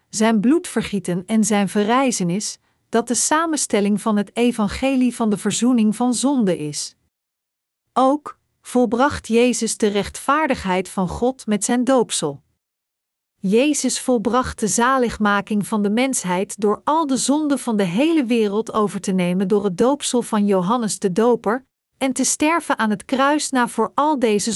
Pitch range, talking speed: 195-250 Hz, 150 wpm